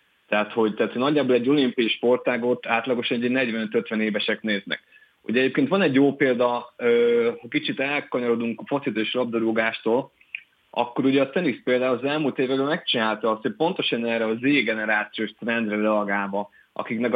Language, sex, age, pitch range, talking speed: Hungarian, male, 30-49, 110-125 Hz, 145 wpm